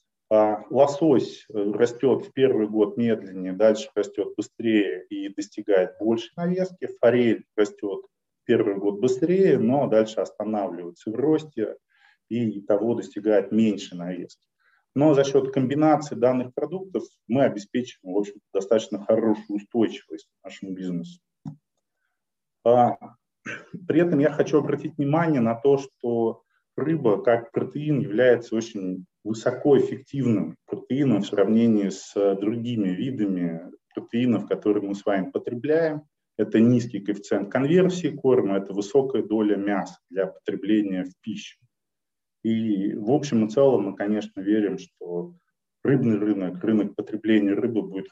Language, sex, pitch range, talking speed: Russian, male, 100-145 Hz, 120 wpm